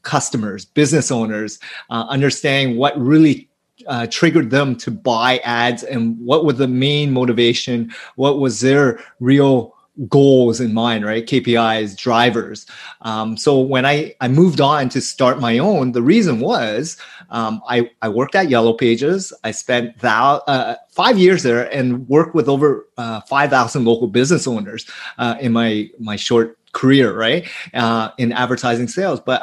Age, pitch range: 30-49, 115-135 Hz